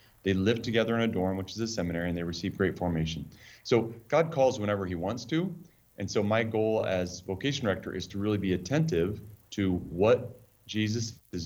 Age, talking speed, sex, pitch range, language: 30-49, 200 wpm, male, 95-115 Hz, English